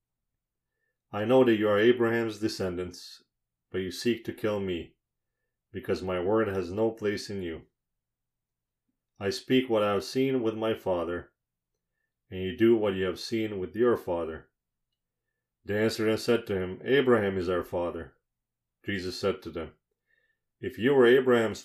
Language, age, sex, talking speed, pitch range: English, 40-59, male, 160 wpm, 85-115 Hz